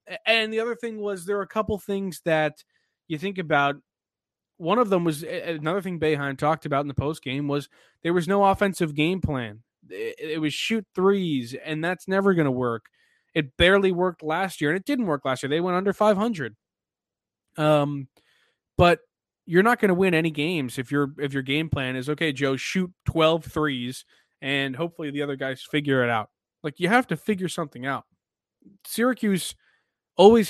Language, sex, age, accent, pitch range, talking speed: English, male, 20-39, American, 130-185 Hz, 190 wpm